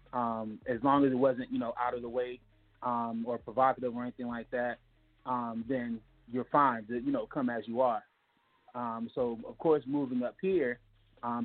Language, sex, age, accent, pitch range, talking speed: English, male, 30-49, American, 120-140 Hz, 200 wpm